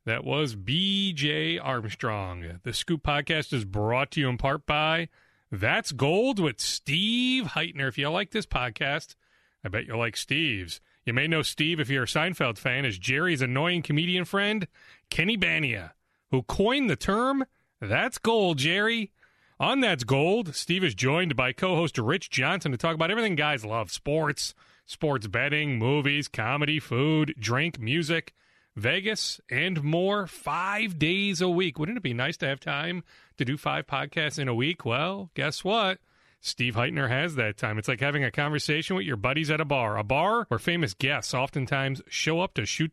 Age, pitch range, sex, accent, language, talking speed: 30-49, 130-185 Hz, male, American, English, 175 wpm